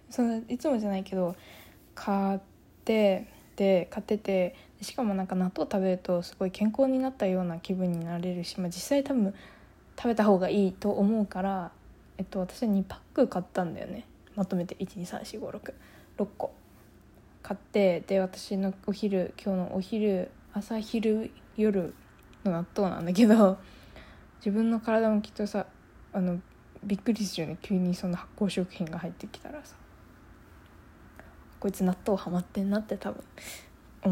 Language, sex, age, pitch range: Japanese, female, 20-39, 180-220 Hz